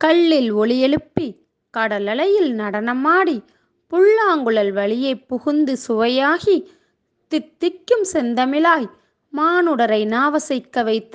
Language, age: Tamil, 20-39